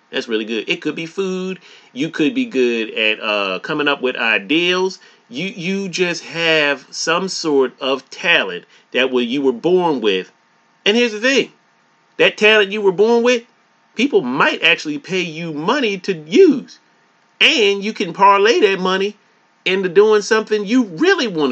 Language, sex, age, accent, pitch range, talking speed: English, male, 30-49, American, 150-235 Hz, 165 wpm